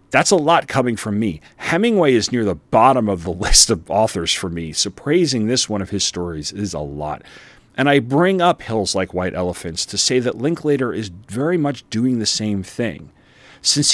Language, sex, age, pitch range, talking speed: English, male, 40-59, 90-125 Hz, 205 wpm